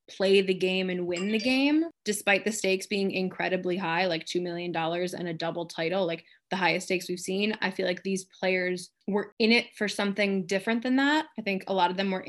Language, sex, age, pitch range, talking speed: English, female, 20-39, 180-215 Hz, 230 wpm